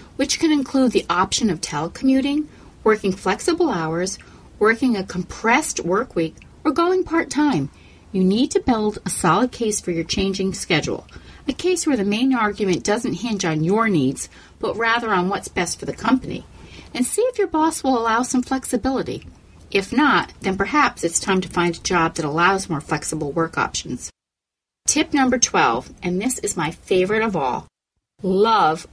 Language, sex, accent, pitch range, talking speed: English, female, American, 175-265 Hz, 175 wpm